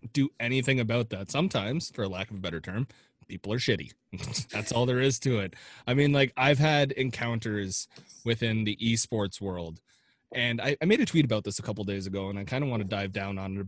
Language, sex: English, male